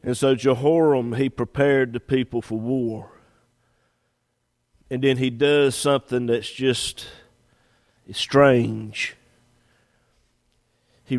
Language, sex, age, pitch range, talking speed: English, male, 50-69, 110-125 Hz, 95 wpm